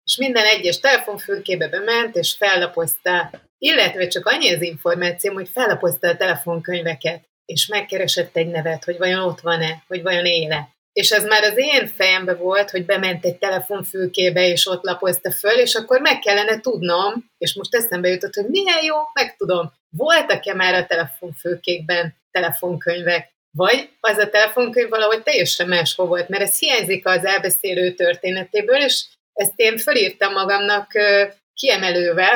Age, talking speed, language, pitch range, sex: 30-49, 150 wpm, Hungarian, 175-220 Hz, female